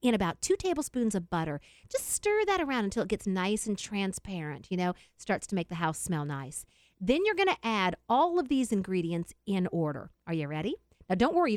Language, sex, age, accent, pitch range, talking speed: English, female, 40-59, American, 180-285 Hz, 225 wpm